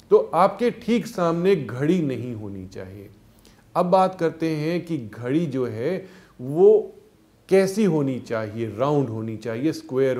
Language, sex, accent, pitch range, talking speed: Hindi, male, native, 115-170 Hz, 140 wpm